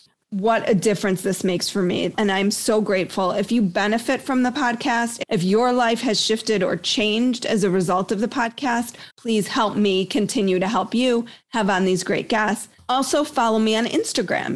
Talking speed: 195 wpm